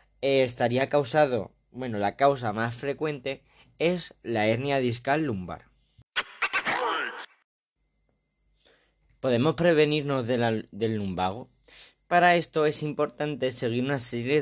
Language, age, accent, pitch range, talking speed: Spanish, 20-39, Spanish, 115-140 Hz, 95 wpm